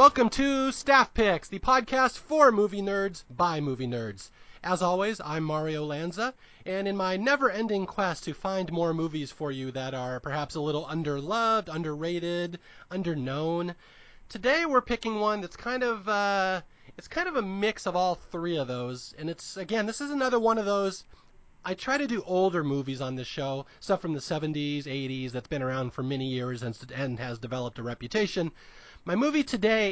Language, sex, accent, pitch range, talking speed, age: English, male, American, 145-205 Hz, 185 wpm, 30-49